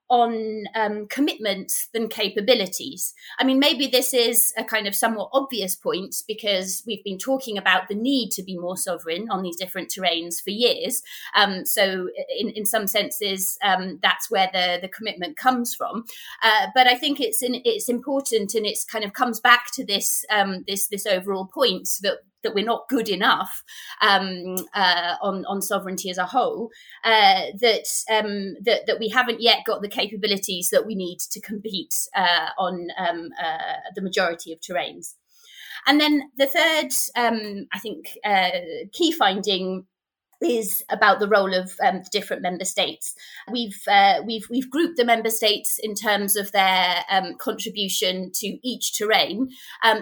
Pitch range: 195-245 Hz